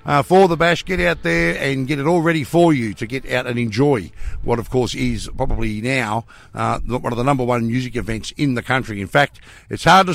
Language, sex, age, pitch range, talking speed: English, male, 60-79, 115-165 Hz, 240 wpm